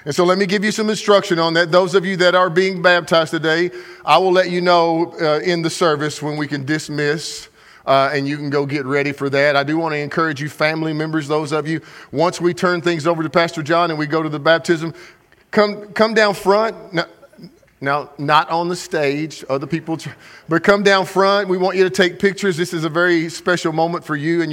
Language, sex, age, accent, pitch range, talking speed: English, male, 40-59, American, 150-185 Hz, 235 wpm